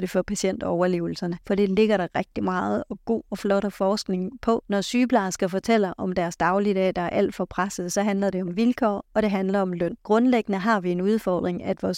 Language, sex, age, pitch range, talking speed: Danish, female, 30-49, 185-210 Hz, 220 wpm